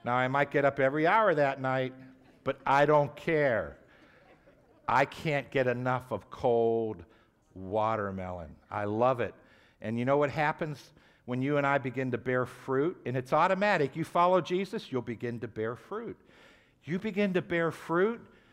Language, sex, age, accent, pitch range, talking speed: English, male, 60-79, American, 130-175 Hz, 170 wpm